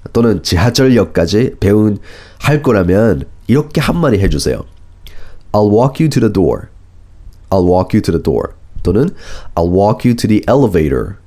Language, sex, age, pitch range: Korean, male, 30-49, 85-115 Hz